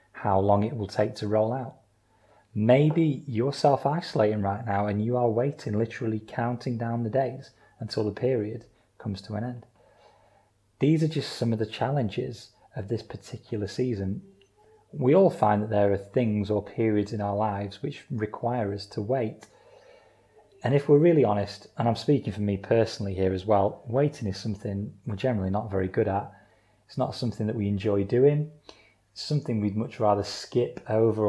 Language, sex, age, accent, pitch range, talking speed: English, male, 30-49, British, 100-125 Hz, 180 wpm